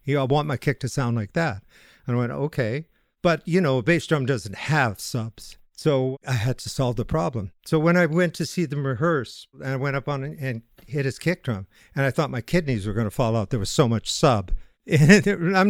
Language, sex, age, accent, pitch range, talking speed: English, male, 50-69, American, 115-150 Hz, 240 wpm